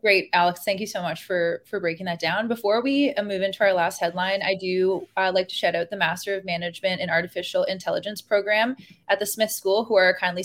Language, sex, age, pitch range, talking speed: English, female, 20-39, 175-205 Hz, 230 wpm